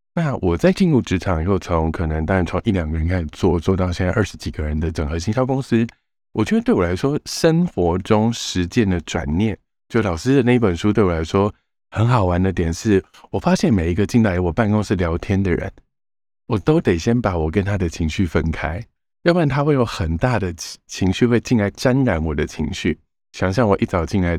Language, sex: Chinese, male